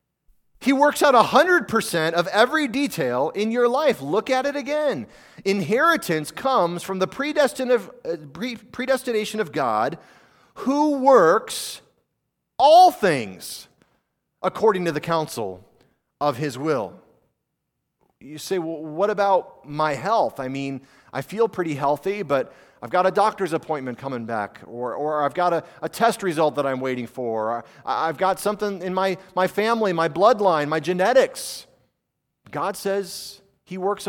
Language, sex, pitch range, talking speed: English, male, 155-230 Hz, 145 wpm